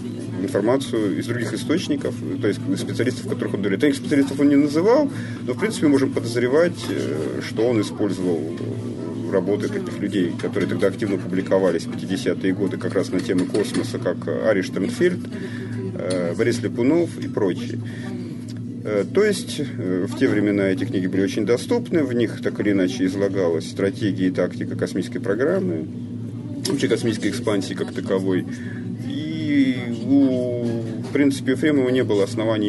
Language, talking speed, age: Russian, 145 wpm, 40-59